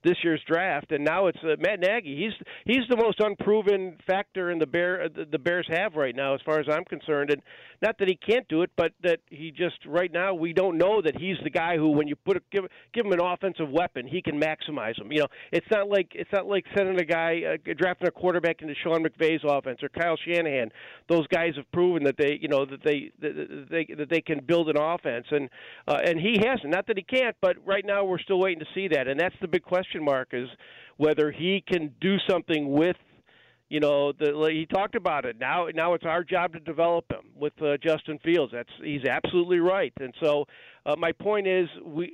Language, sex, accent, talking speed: English, male, American, 235 wpm